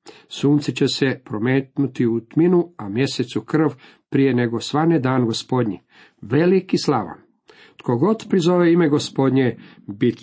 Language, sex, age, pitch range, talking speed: Croatian, male, 50-69, 115-145 Hz, 130 wpm